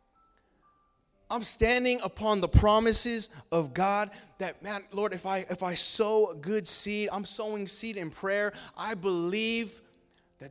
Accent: American